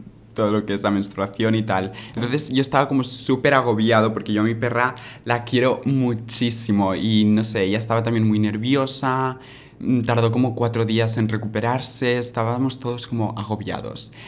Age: 20-39